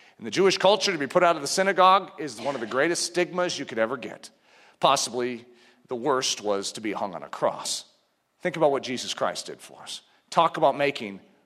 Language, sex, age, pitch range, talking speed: English, male, 40-59, 155-240 Hz, 220 wpm